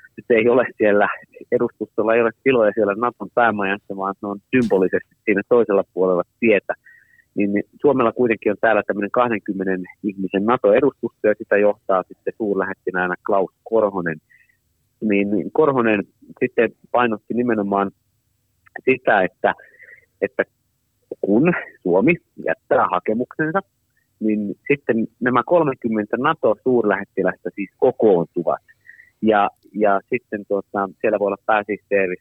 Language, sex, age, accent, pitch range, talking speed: Finnish, male, 30-49, native, 100-120 Hz, 115 wpm